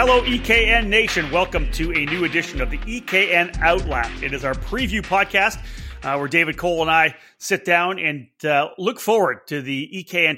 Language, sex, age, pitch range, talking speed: English, male, 30-49, 145-190 Hz, 185 wpm